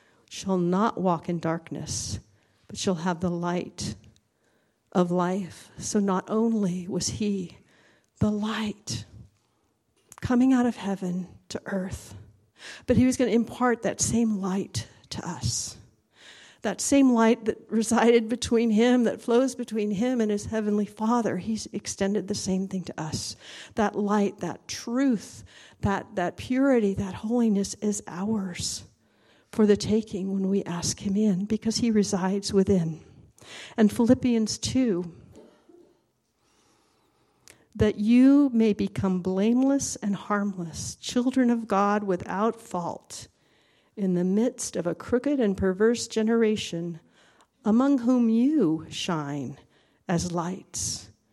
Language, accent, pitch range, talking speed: English, American, 180-230 Hz, 130 wpm